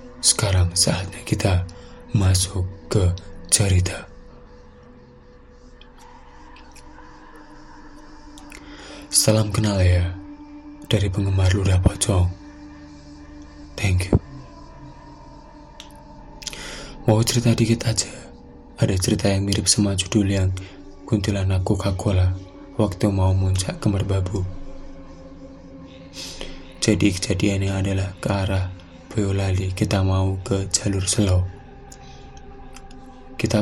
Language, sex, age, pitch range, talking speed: Indonesian, male, 20-39, 90-105 Hz, 80 wpm